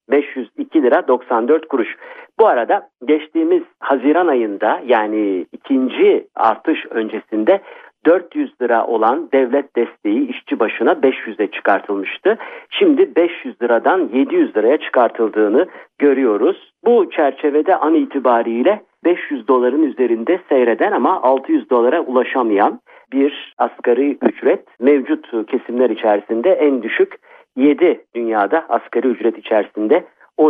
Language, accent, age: Turkish, native, 50-69